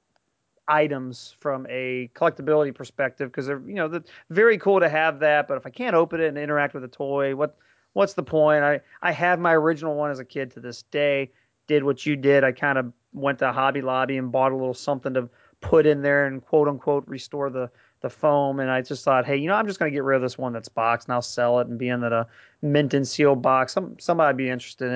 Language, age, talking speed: English, 30-49, 245 wpm